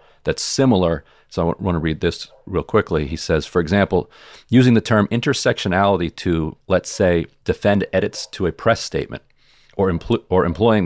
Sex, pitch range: male, 80-100 Hz